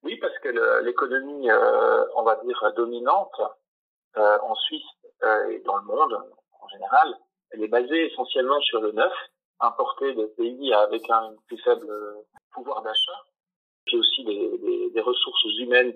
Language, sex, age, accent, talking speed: French, male, 40-59, French, 155 wpm